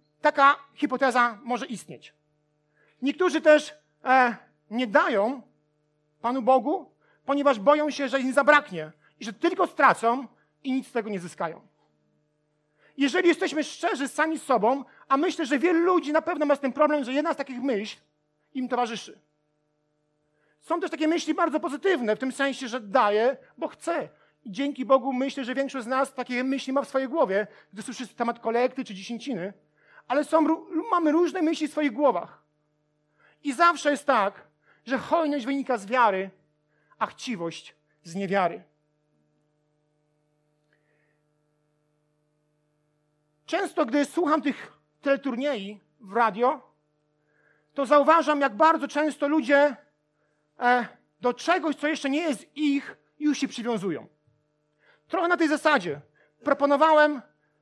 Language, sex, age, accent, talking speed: Polish, male, 40-59, native, 135 wpm